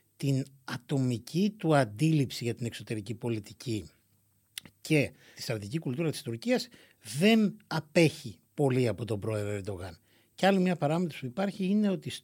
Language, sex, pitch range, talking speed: Greek, male, 115-160 Hz, 140 wpm